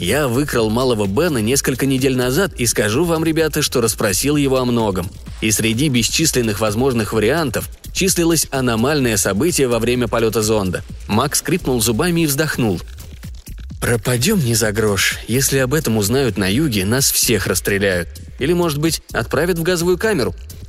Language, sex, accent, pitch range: Russian, male, native, 100-140 Hz